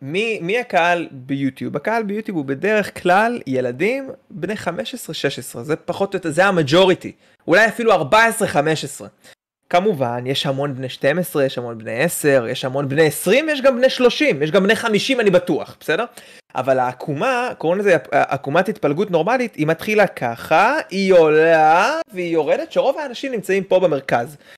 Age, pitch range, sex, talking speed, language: 20-39, 145-225 Hz, male, 155 wpm, Hebrew